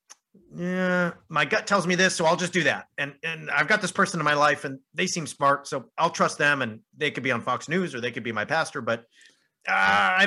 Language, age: English, 40-59